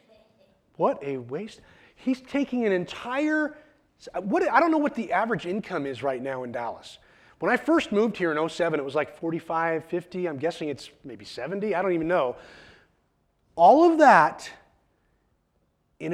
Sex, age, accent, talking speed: male, 30-49, American, 165 wpm